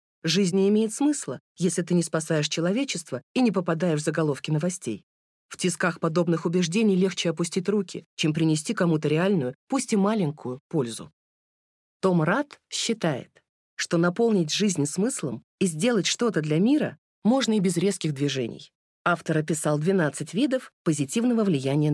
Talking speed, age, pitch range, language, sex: 145 wpm, 20-39, 155-210 Hz, Russian, female